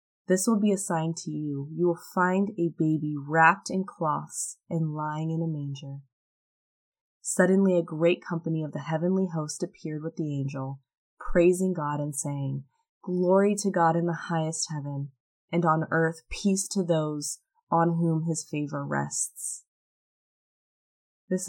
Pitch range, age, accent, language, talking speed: 155-185 Hz, 20-39, American, English, 155 wpm